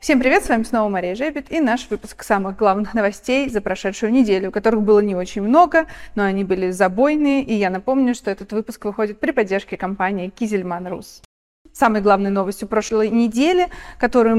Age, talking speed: 30-49, 180 wpm